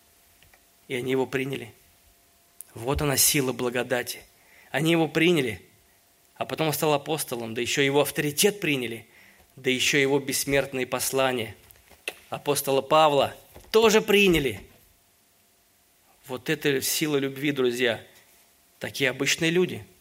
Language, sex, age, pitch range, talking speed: Russian, male, 20-39, 110-145 Hz, 115 wpm